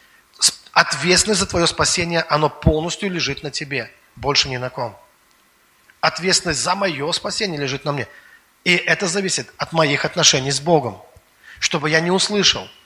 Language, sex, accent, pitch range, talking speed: Russian, male, native, 135-170 Hz, 150 wpm